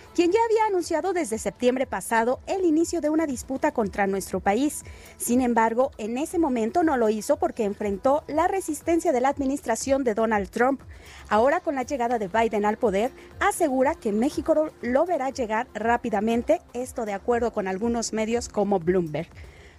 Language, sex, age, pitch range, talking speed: Spanish, female, 40-59, 220-315 Hz, 170 wpm